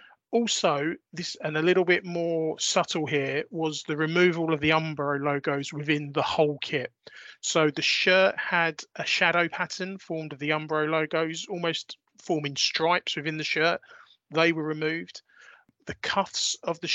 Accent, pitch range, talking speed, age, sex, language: British, 145-175 Hz, 160 wpm, 30-49, male, English